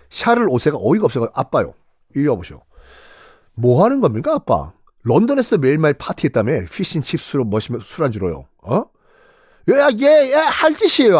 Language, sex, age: Korean, male, 40-59